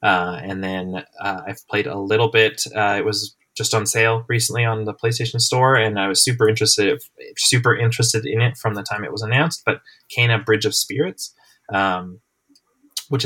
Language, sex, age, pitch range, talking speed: English, male, 20-39, 100-120 Hz, 190 wpm